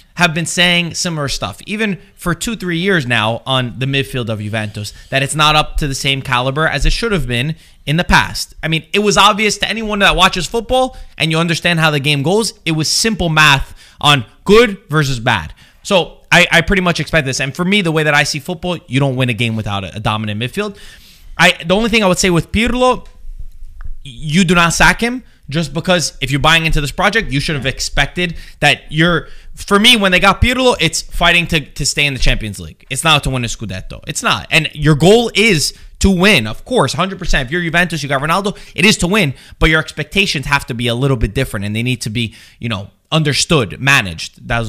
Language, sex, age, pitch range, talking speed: English, male, 20-39, 130-185 Hz, 230 wpm